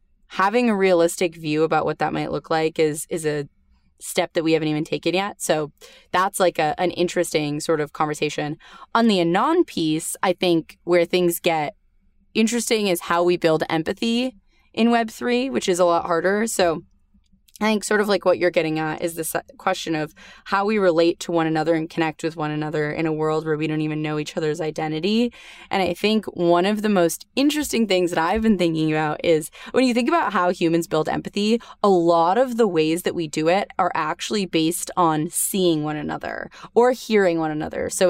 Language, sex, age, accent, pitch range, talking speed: English, female, 20-39, American, 160-195 Hz, 205 wpm